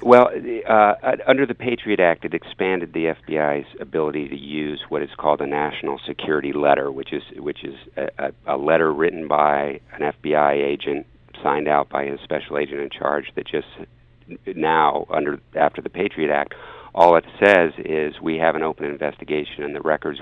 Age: 50-69